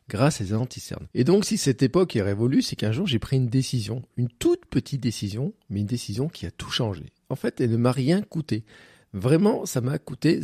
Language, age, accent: French, 40-59, French